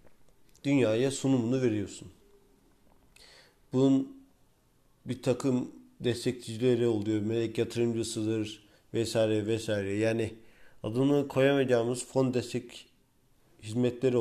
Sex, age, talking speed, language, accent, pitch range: male, 50-69, 75 wpm, Turkish, native, 115-130 Hz